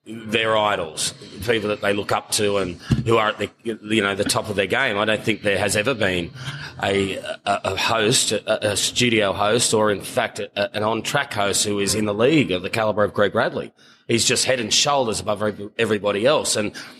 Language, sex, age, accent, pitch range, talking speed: English, male, 30-49, Australian, 105-125 Hz, 220 wpm